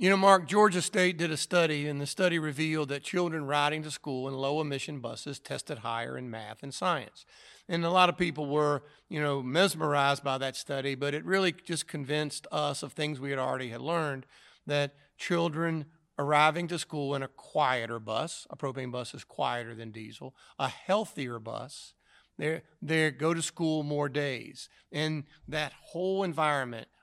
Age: 50-69